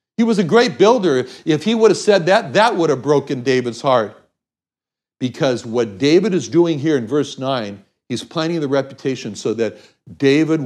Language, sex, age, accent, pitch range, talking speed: English, male, 60-79, American, 120-190 Hz, 185 wpm